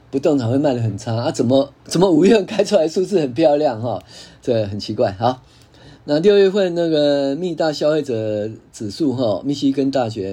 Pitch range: 110-145 Hz